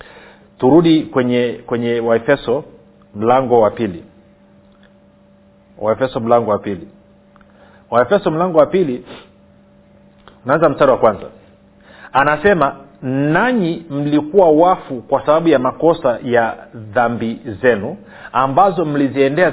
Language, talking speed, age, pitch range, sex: Swahili, 100 wpm, 40-59, 120-165 Hz, male